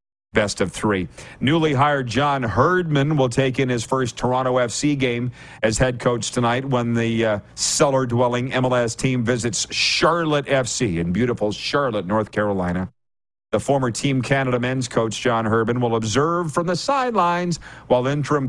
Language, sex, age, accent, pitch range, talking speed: English, male, 50-69, American, 115-140 Hz, 155 wpm